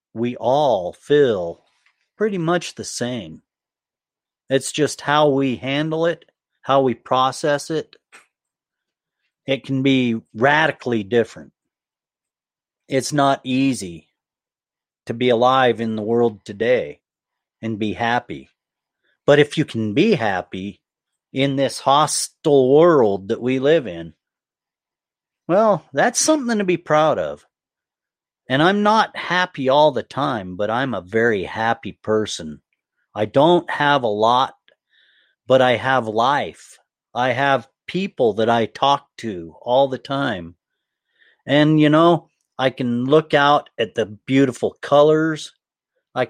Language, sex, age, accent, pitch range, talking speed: English, male, 40-59, American, 115-155 Hz, 130 wpm